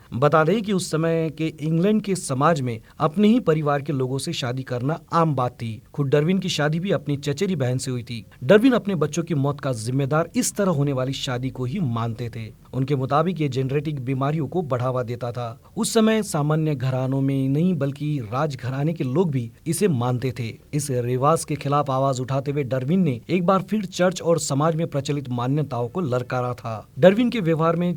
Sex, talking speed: male, 205 wpm